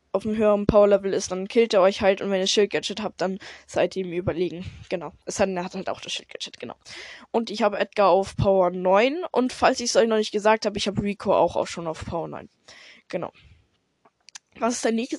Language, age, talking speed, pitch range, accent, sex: German, 10-29, 235 wpm, 200-230 Hz, German, female